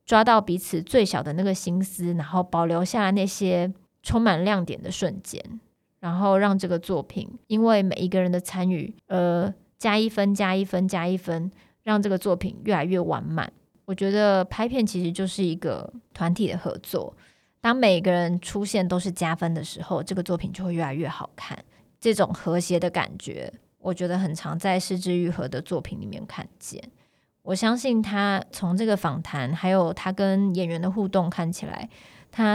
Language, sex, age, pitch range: Chinese, female, 20-39, 175-205 Hz